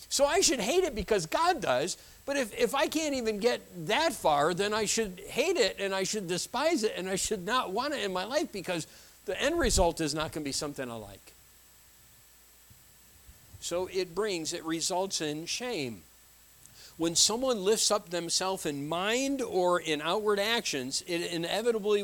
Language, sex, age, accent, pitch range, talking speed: English, male, 50-69, American, 160-225 Hz, 185 wpm